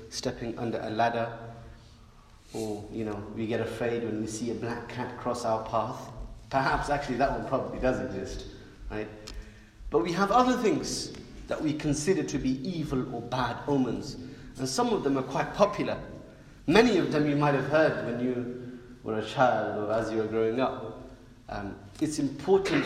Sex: male